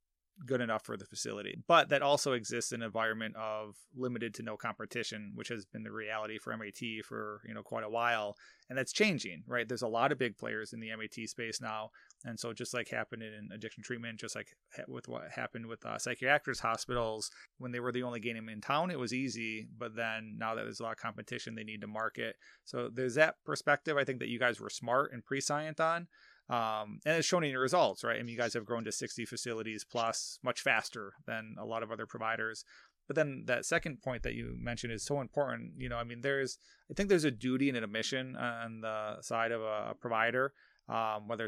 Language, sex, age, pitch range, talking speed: English, male, 20-39, 110-125 Hz, 230 wpm